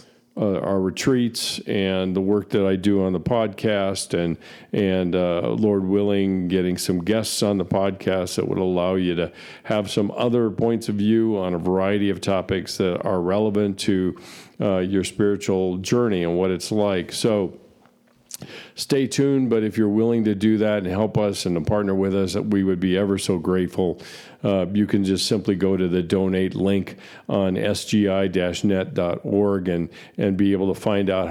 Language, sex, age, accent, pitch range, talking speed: English, male, 50-69, American, 95-105 Hz, 180 wpm